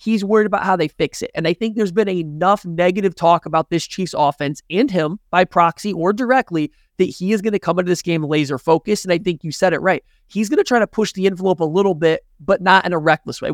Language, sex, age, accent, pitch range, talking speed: English, male, 20-39, American, 155-195 Hz, 265 wpm